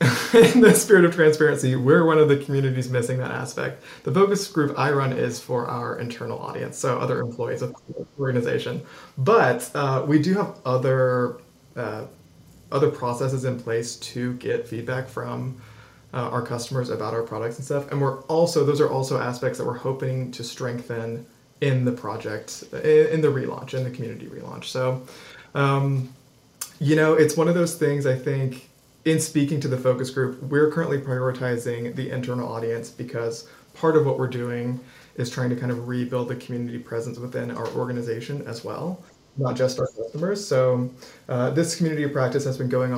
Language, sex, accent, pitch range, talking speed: English, male, American, 125-145 Hz, 185 wpm